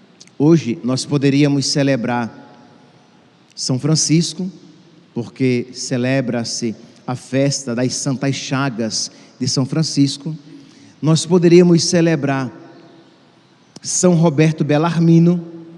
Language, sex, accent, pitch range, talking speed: Portuguese, male, Brazilian, 140-180 Hz, 85 wpm